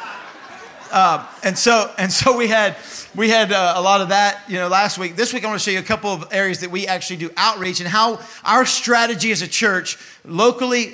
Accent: American